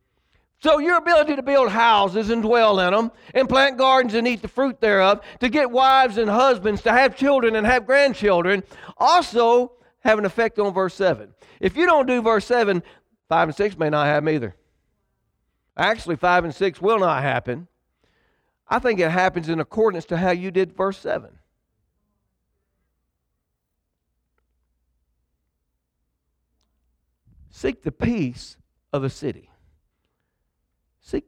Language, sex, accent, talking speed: English, male, American, 145 wpm